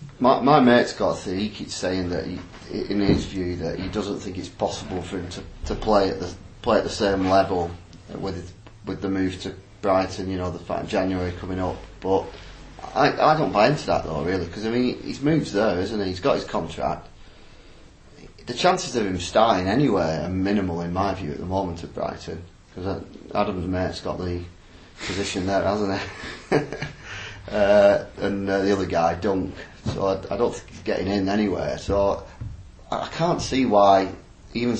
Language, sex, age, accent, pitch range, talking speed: English, male, 30-49, British, 90-100 Hz, 195 wpm